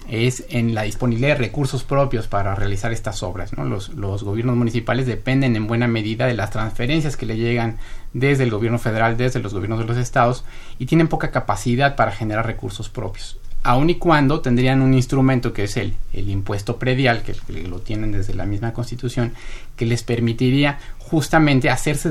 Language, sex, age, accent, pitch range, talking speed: Spanish, male, 40-59, Mexican, 110-130 Hz, 185 wpm